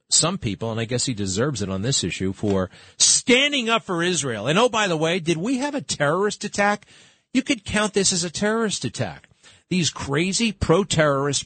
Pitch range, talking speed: 110-175 Hz, 200 wpm